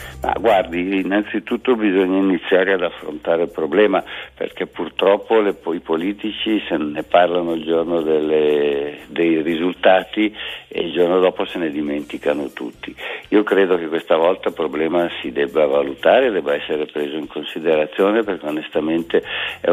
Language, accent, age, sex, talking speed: Italian, native, 60-79, male, 145 wpm